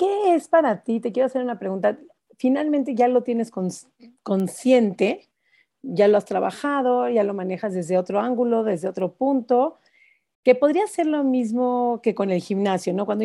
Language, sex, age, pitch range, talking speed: Spanish, female, 40-59, 200-255 Hz, 175 wpm